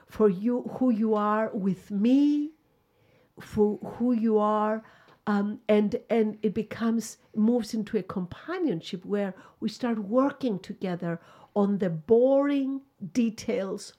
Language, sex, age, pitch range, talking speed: English, female, 60-79, 210-265 Hz, 125 wpm